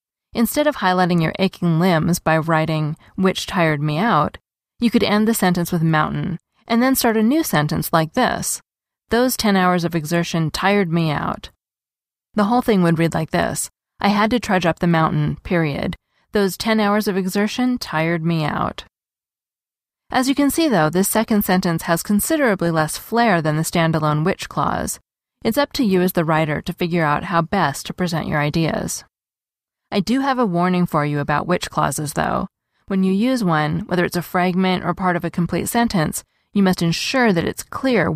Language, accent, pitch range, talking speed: English, American, 165-210 Hz, 190 wpm